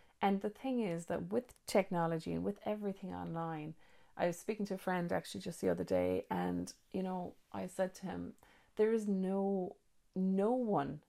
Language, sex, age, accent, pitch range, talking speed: English, female, 30-49, Irish, 165-205 Hz, 185 wpm